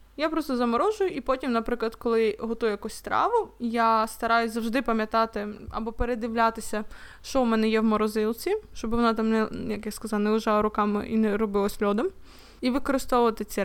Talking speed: 170 wpm